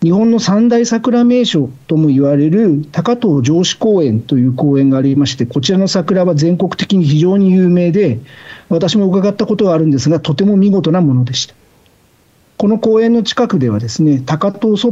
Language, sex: Japanese, male